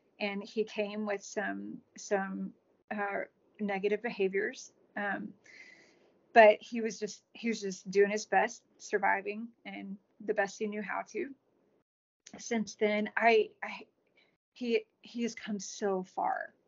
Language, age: English, 30-49